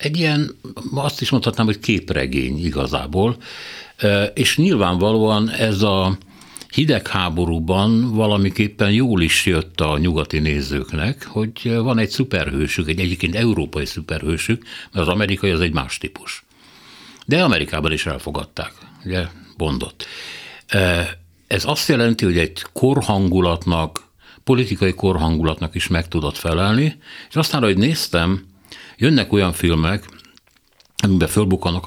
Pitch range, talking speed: 80-105 Hz, 115 wpm